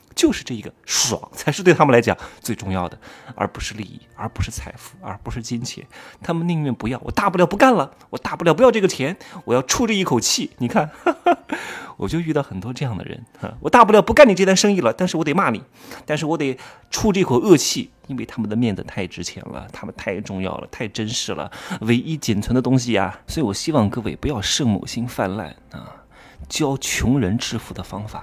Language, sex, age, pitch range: Chinese, male, 30-49, 110-170 Hz